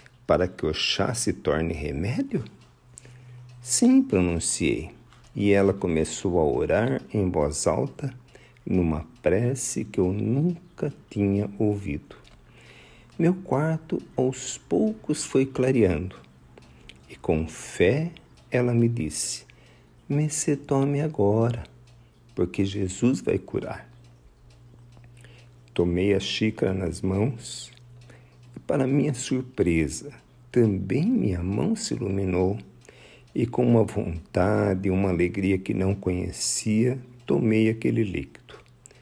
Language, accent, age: Portuguese, Brazilian, 50-69